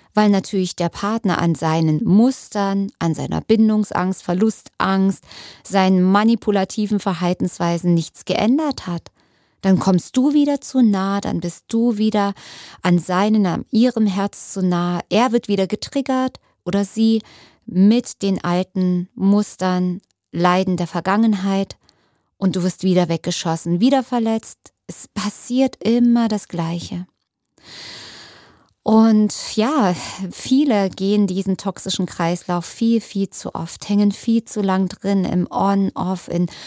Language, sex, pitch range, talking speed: German, female, 180-215 Hz, 130 wpm